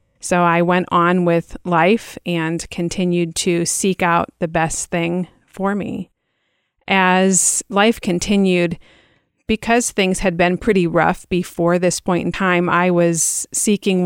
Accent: American